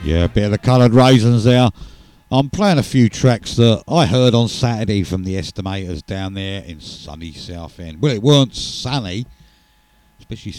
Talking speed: 180 wpm